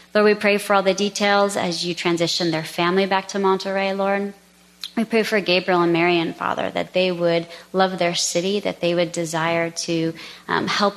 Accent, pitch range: American, 170-190 Hz